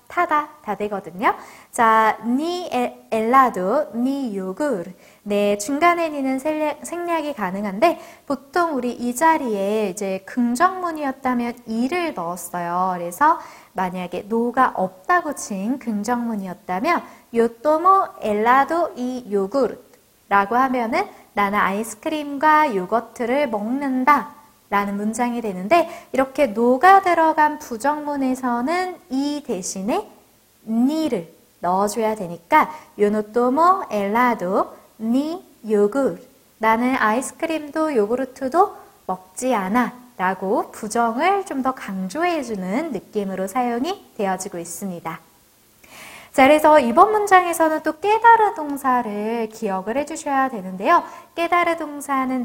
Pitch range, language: 215-310 Hz, English